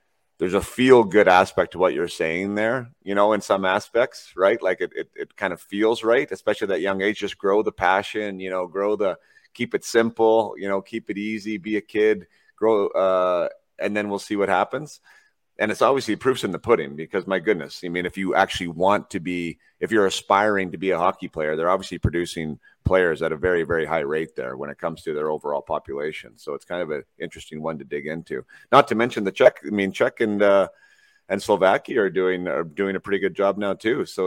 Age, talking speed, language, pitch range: 30-49, 230 wpm, English, 90-115 Hz